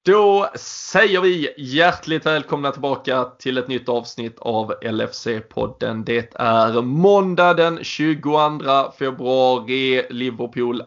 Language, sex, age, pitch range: Swedish, male, 20-39, 120-155 Hz